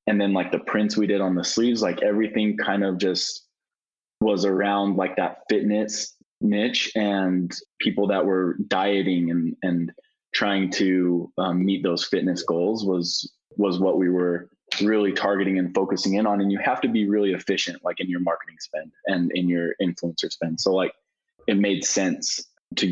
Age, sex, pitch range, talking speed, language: 20-39, male, 90-105 Hz, 180 wpm, English